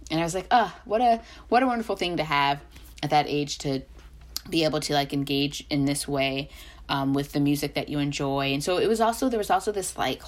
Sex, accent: female, American